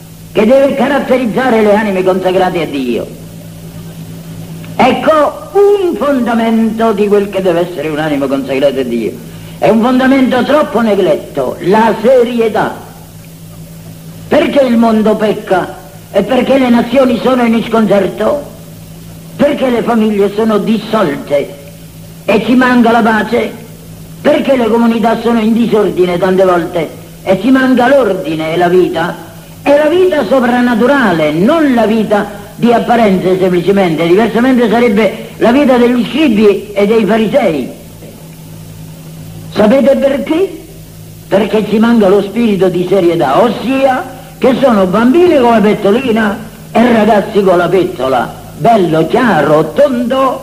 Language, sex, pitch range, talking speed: Italian, female, 180-245 Hz, 125 wpm